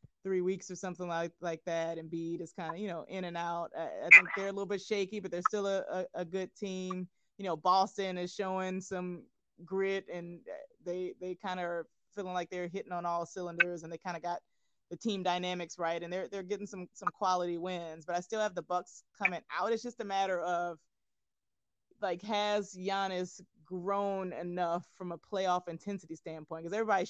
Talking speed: 215 wpm